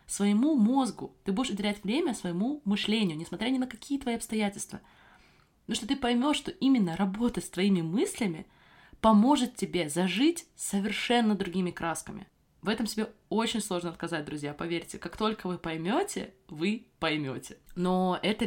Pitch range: 150-205 Hz